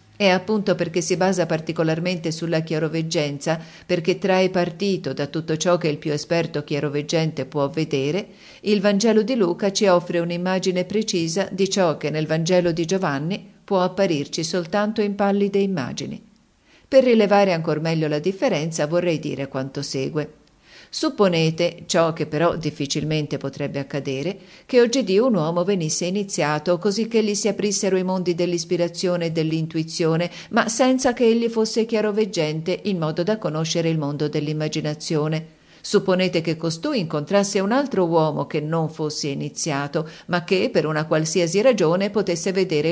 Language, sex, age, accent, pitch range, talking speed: Italian, female, 50-69, native, 155-200 Hz, 150 wpm